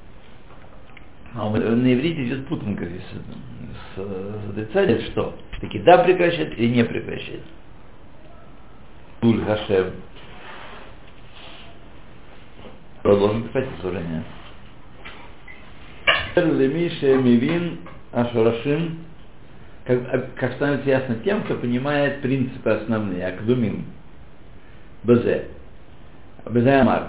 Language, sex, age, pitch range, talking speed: Russian, male, 60-79, 110-145 Hz, 65 wpm